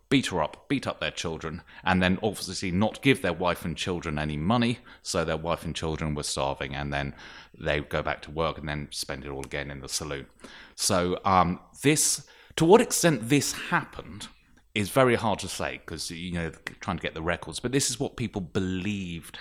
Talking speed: 210 wpm